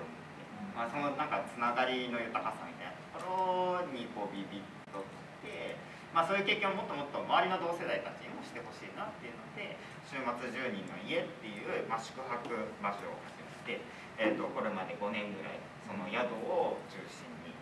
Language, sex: Japanese, male